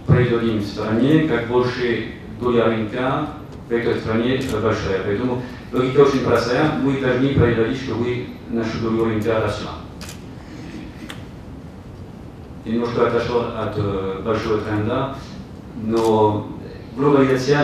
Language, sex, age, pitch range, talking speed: Russian, male, 40-59, 100-120 Hz, 110 wpm